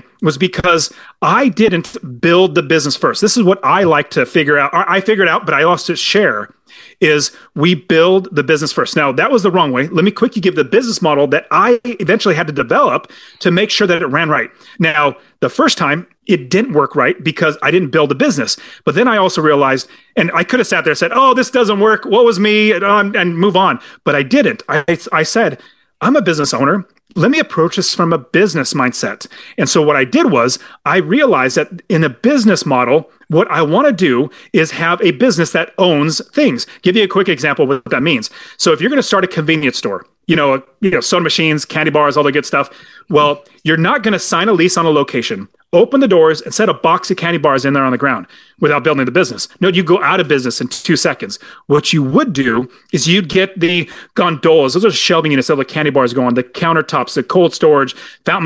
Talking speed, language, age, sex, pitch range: 235 wpm, English, 30-49, male, 150-205 Hz